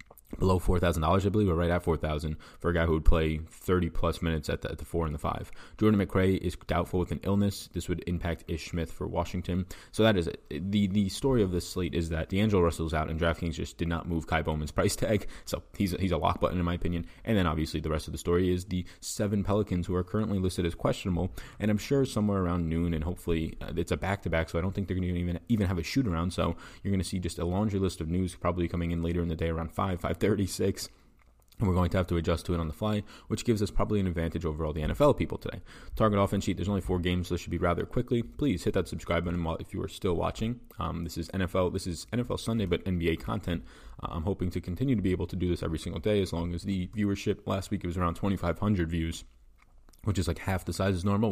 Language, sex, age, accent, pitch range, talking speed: English, male, 20-39, American, 85-100 Hz, 275 wpm